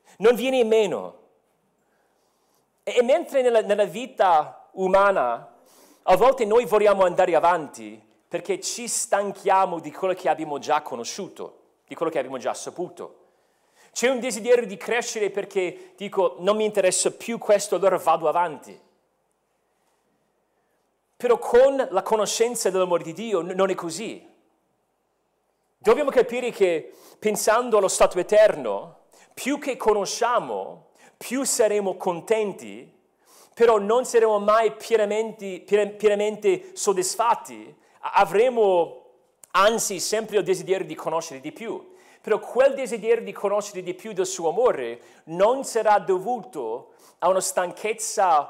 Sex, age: male, 40-59